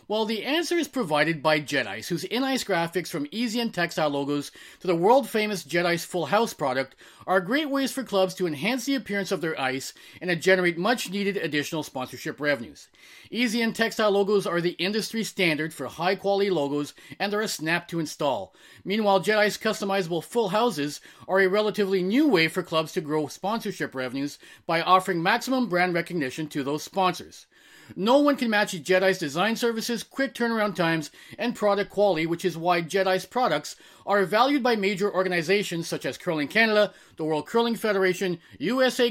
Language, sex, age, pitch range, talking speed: English, male, 30-49, 155-220 Hz, 175 wpm